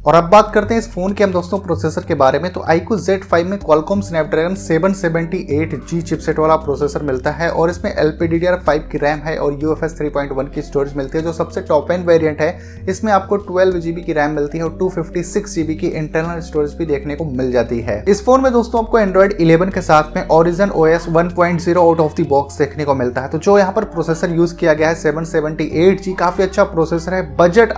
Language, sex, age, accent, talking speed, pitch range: Hindi, male, 20-39, native, 215 wpm, 155-185 Hz